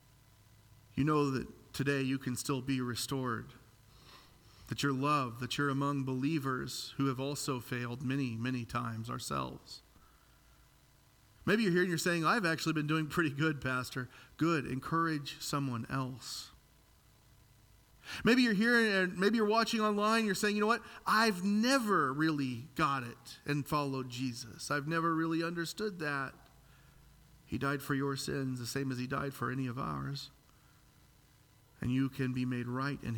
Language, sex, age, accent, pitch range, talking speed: English, male, 40-59, American, 125-155 Hz, 160 wpm